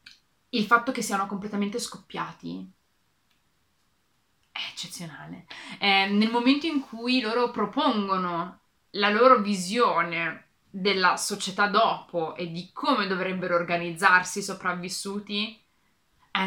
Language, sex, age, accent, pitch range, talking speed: Italian, female, 20-39, native, 180-225 Hz, 105 wpm